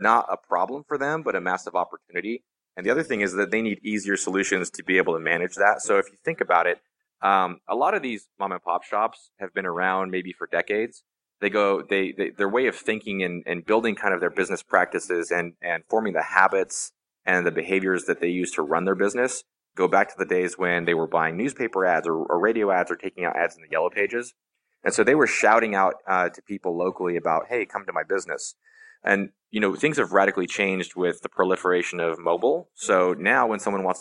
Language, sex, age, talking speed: English, male, 20-39, 230 wpm